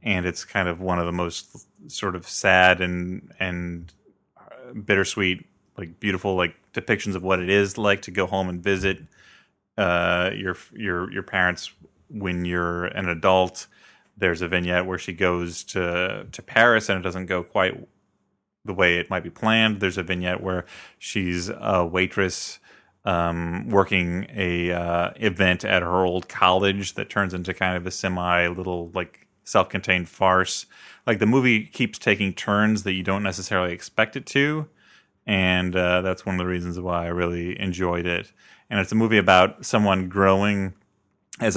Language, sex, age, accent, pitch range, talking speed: English, male, 30-49, American, 90-100 Hz, 170 wpm